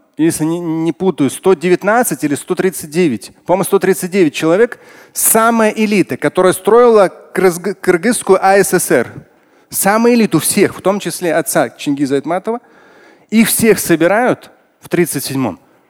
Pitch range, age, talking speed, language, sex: 145-190 Hz, 30-49, 110 wpm, Russian, male